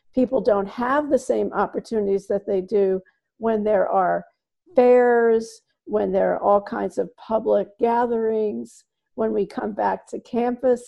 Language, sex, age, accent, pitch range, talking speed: English, female, 50-69, American, 195-235 Hz, 150 wpm